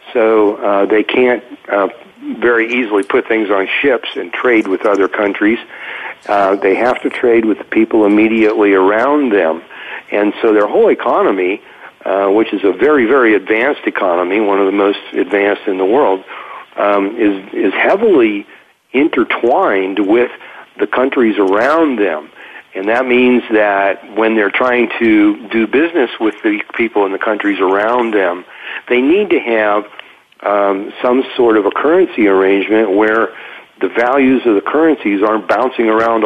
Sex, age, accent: male, 50-69, American